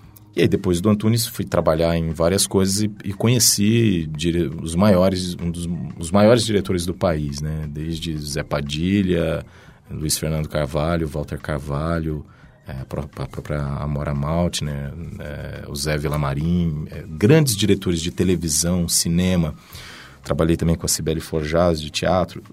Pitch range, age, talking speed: 85-105 Hz, 40-59, 155 wpm